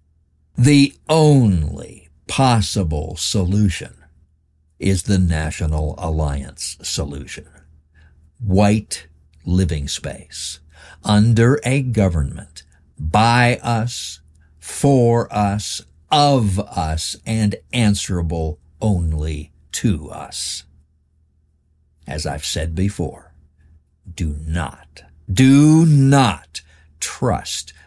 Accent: American